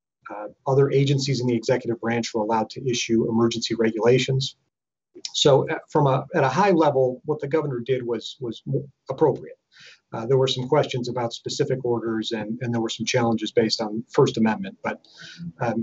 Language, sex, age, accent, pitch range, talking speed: English, male, 40-59, American, 115-135 Hz, 180 wpm